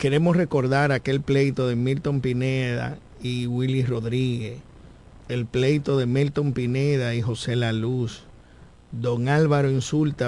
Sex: male